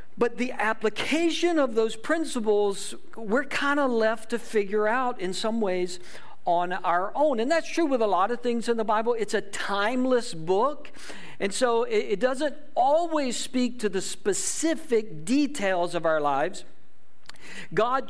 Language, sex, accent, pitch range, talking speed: English, male, American, 195-265 Hz, 160 wpm